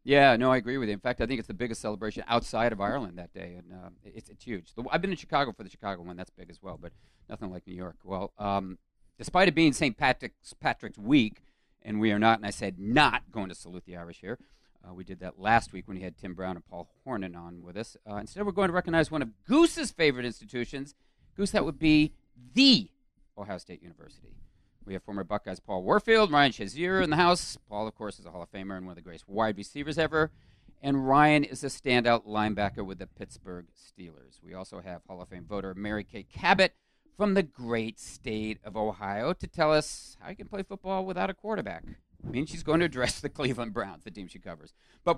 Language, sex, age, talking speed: English, male, 40-59, 240 wpm